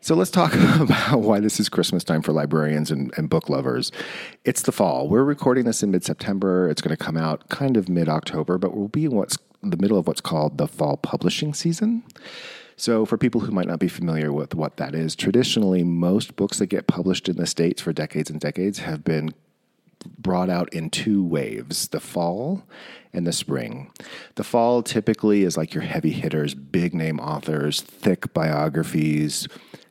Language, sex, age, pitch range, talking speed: English, male, 40-59, 80-110 Hz, 190 wpm